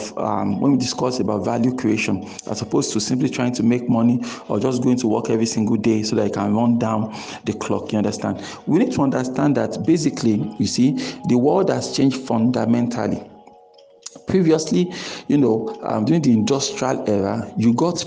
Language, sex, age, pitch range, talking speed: English, male, 50-69, 110-130 Hz, 185 wpm